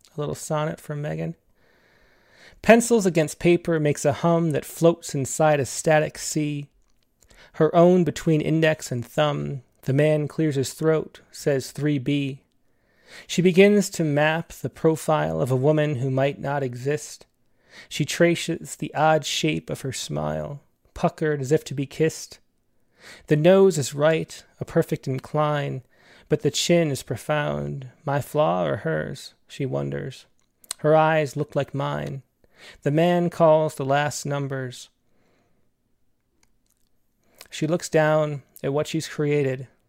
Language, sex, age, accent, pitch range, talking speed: English, male, 30-49, American, 135-160 Hz, 140 wpm